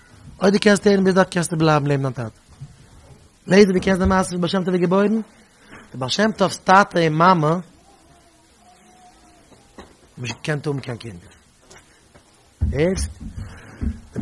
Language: English